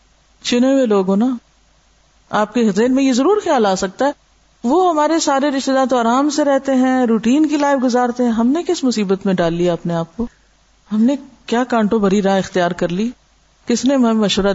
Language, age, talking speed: Urdu, 50-69, 155 wpm